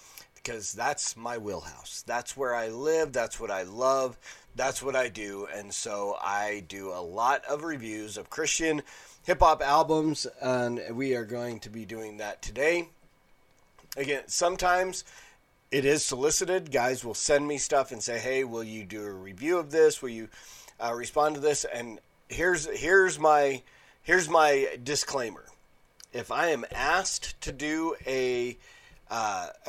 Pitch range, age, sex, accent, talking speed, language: 115-155 Hz, 30-49, male, American, 155 wpm, English